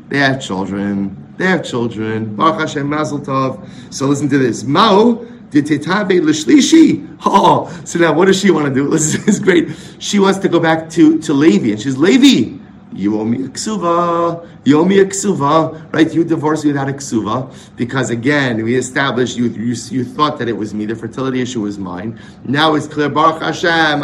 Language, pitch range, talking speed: English, 115-160 Hz, 200 wpm